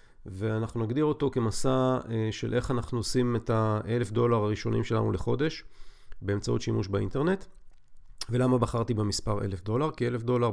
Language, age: Hebrew, 40-59